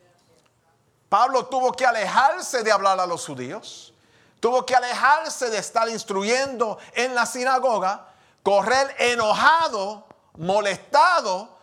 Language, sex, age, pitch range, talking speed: English, male, 40-59, 185-240 Hz, 110 wpm